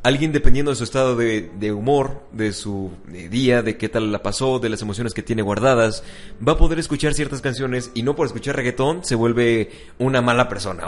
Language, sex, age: Spanish, male, 30-49